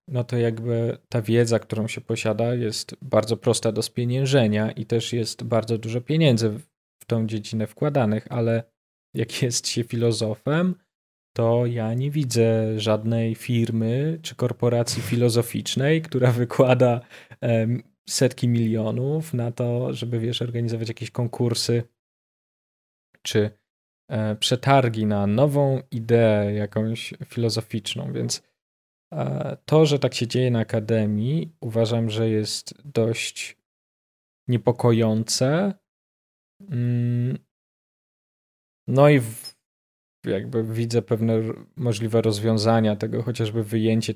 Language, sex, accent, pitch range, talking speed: Polish, male, native, 110-125 Hz, 105 wpm